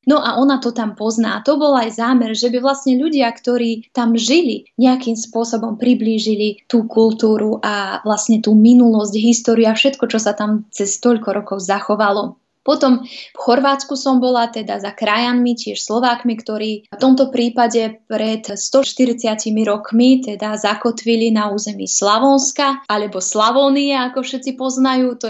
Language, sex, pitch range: Slovak, female, 215-245 Hz